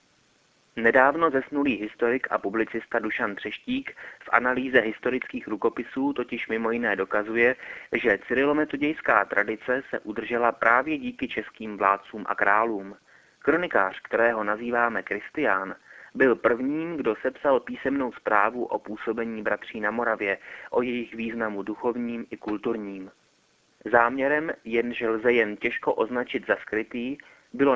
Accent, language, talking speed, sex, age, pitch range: native, Czech, 120 wpm, male, 30-49, 110-135 Hz